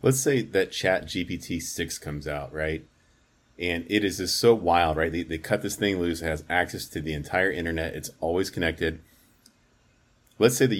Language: English